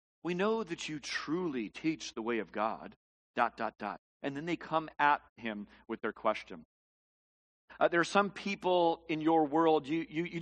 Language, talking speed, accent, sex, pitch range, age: English, 190 wpm, American, male, 150-225 Hz, 50-69